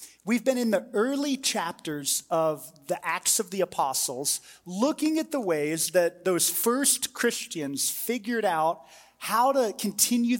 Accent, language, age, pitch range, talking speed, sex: American, English, 30-49, 165-215 Hz, 145 wpm, male